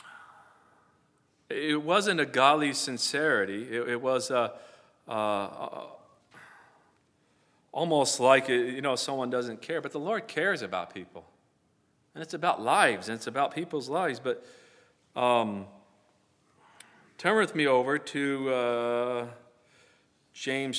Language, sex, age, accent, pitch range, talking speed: English, male, 40-59, American, 125-155 Hz, 120 wpm